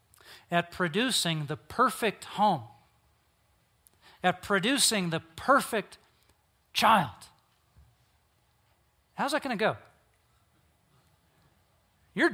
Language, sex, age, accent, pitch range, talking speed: English, male, 40-59, American, 130-205 Hz, 80 wpm